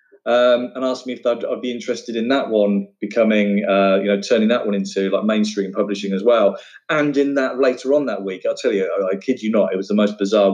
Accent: British